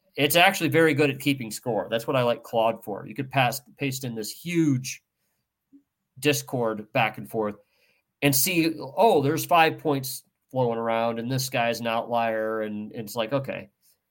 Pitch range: 120-160 Hz